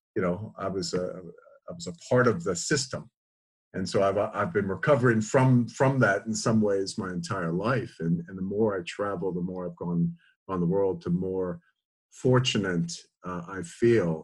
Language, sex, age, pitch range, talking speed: English, male, 50-69, 90-115 Hz, 195 wpm